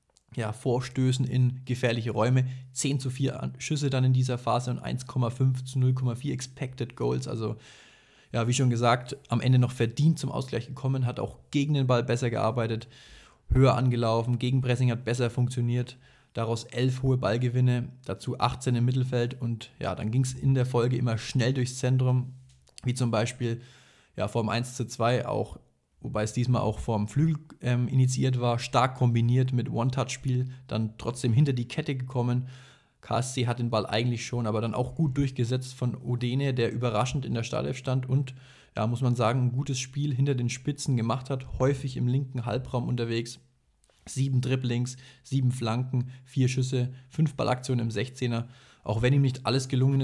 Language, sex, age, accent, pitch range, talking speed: German, male, 20-39, German, 120-130 Hz, 175 wpm